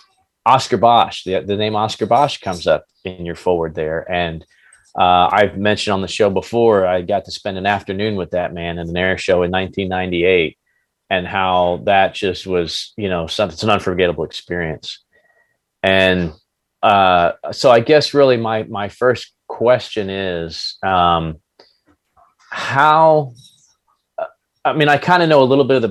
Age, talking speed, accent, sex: 30-49, 165 wpm, American, male